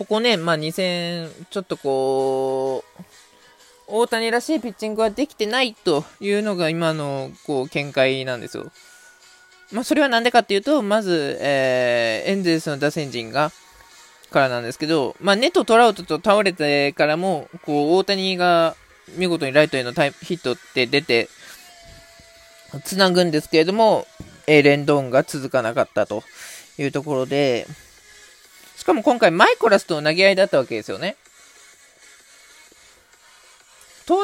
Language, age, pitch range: Japanese, 20-39, 150-225 Hz